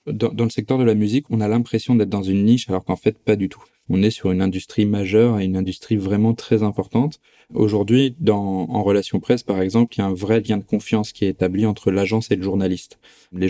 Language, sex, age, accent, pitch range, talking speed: French, male, 20-39, French, 95-115 Hz, 245 wpm